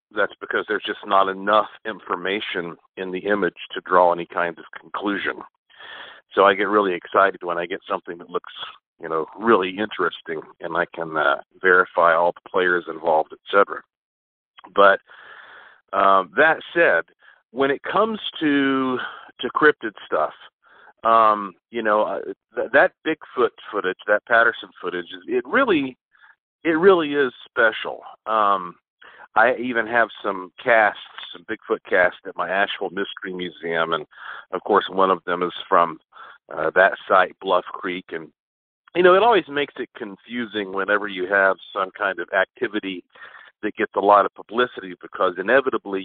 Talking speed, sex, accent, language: 155 wpm, male, American, English